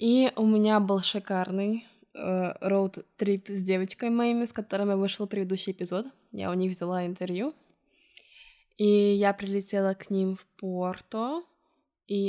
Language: Russian